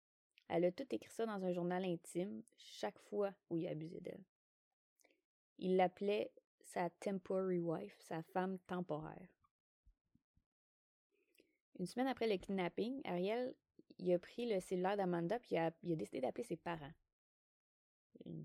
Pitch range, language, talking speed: 160-195 Hz, French, 155 wpm